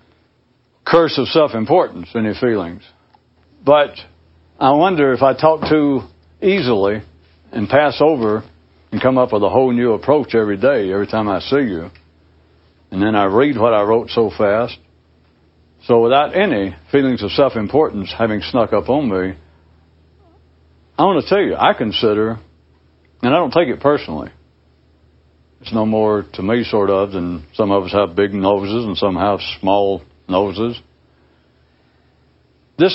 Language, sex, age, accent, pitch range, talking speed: English, male, 60-79, American, 85-125 Hz, 155 wpm